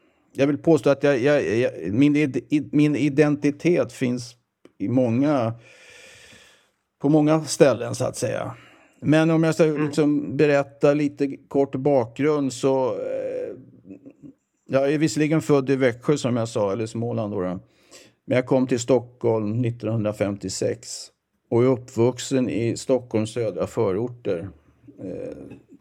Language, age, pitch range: Swedish, 50-69, 115-145 Hz